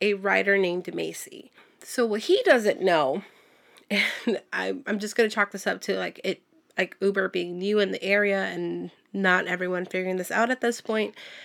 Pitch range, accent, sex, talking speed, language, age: 195-255 Hz, American, female, 185 wpm, English, 30-49